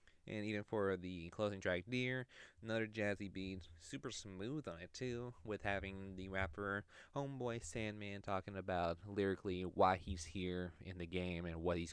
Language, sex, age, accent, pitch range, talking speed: English, male, 20-39, American, 90-110 Hz, 165 wpm